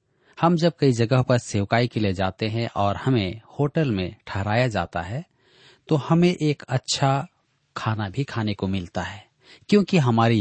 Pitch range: 110-145 Hz